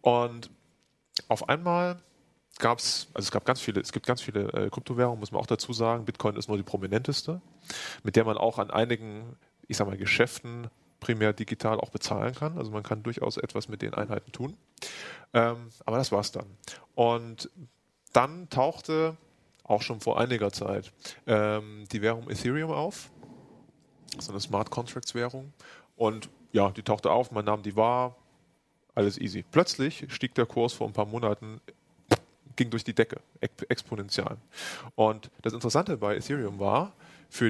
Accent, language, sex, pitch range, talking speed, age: German, German, male, 110-135 Hz, 165 wpm, 30-49